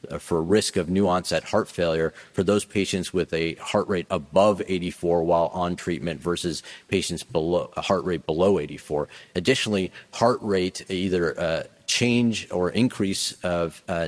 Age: 40-59